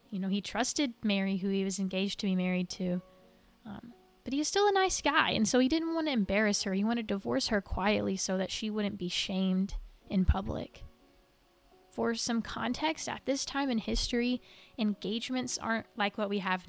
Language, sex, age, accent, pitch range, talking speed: English, female, 20-39, American, 185-225 Hz, 205 wpm